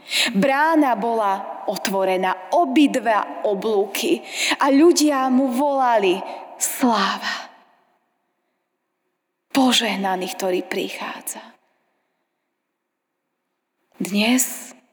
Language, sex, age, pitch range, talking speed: Slovak, female, 20-39, 185-235 Hz, 55 wpm